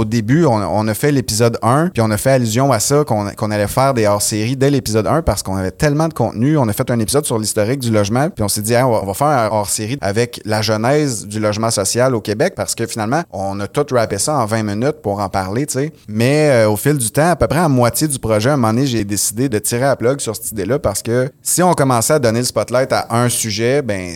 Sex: male